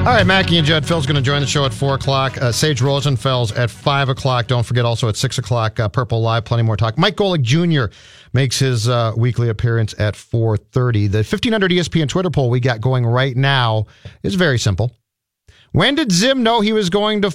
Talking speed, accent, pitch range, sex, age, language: 210 wpm, American, 115-155 Hz, male, 50-69, English